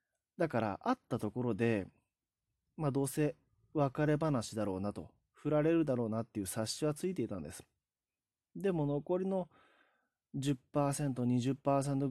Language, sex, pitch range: Japanese, male, 110-155 Hz